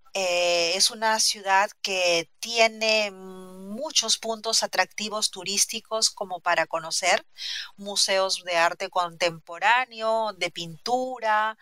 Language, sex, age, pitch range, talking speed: English, female, 40-59, 185-230 Hz, 100 wpm